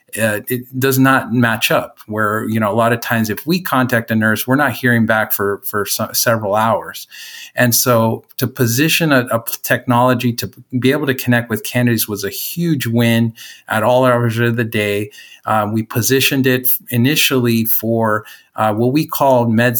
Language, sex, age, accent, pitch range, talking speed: English, male, 50-69, American, 110-125 Hz, 190 wpm